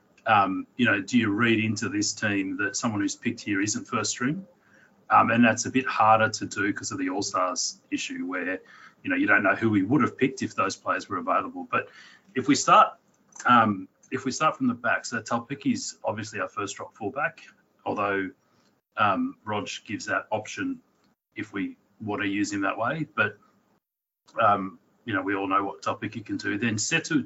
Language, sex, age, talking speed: English, male, 30-49, 205 wpm